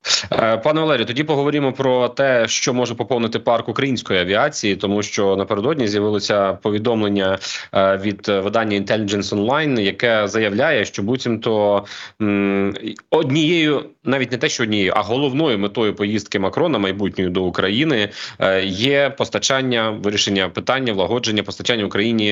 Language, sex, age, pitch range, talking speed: Ukrainian, male, 30-49, 100-135 Hz, 125 wpm